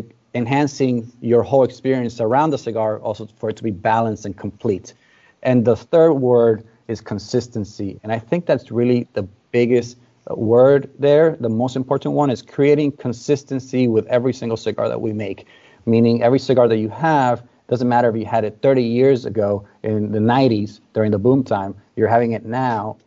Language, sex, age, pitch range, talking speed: English, male, 30-49, 110-125 Hz, 180 wpm